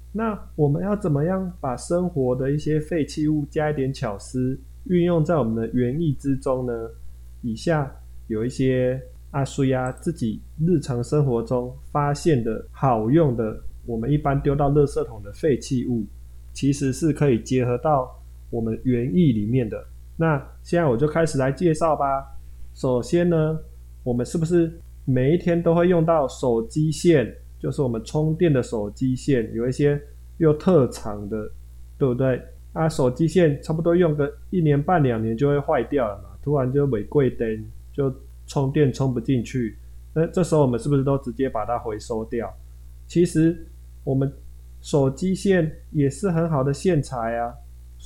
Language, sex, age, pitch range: Chinese, male, 20-39, 110-155 Hz